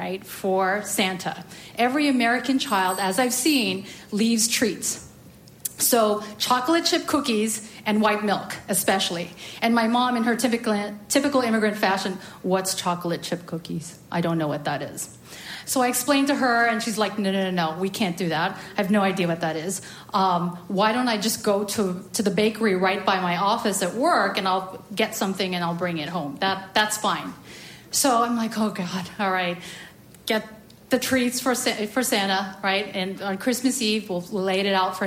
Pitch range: 190-235 Hz